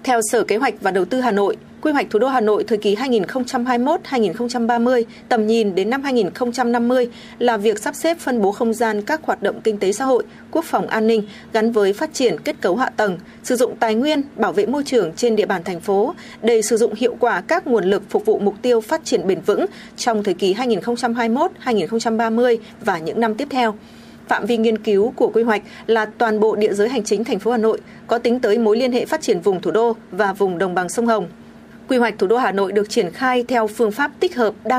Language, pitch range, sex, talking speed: Vietnamese, 210-250 Hz, female, 240 wpm